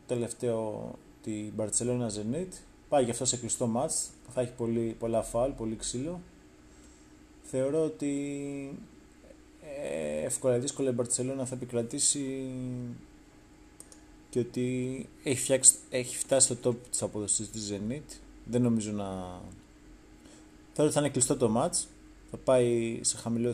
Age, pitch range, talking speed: 20-39, 110-130 Hz, 130 wpm